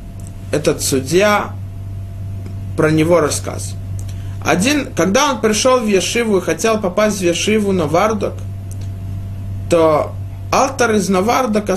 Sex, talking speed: male, 110 wpm